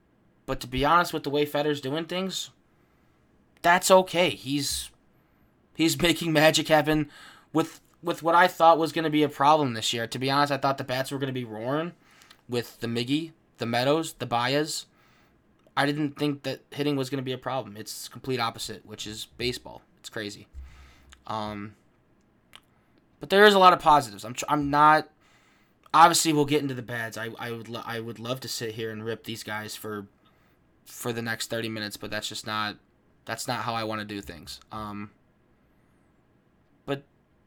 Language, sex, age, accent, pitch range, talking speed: English, male, 20-39, American, 115-150 Hz, 190 wpm